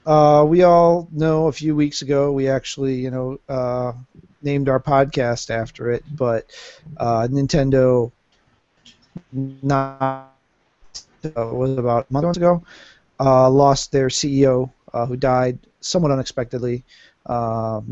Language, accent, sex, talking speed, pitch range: English, American, male, 120 wpm, 120-150 Hz